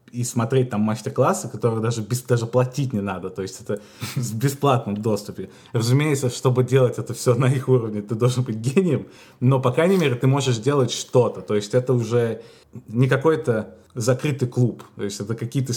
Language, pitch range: Russian, 105-130 Hz